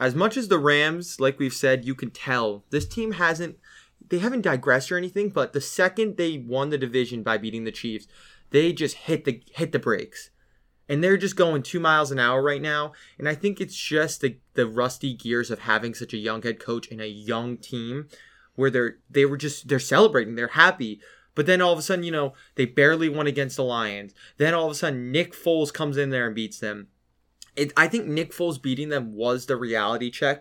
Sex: male